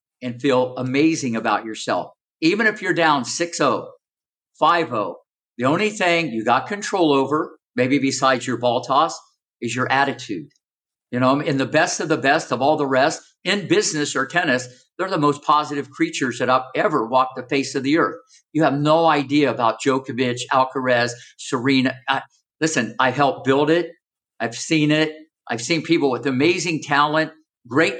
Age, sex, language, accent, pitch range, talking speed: 50-69, male, English, American, 130-160 Hz, 170 wpm